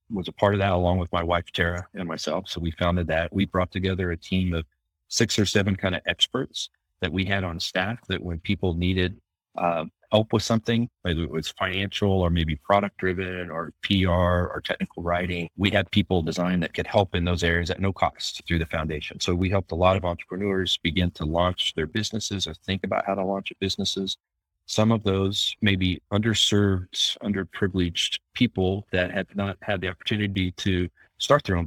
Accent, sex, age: American, male, 40-59